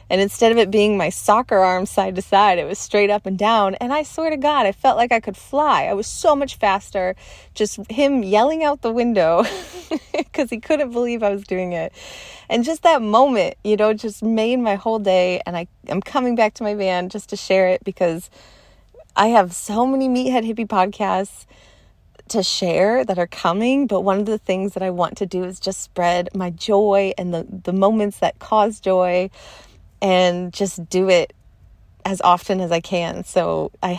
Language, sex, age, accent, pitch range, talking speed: English, female, 30-49, American, 185-225 Hz, 205 wpm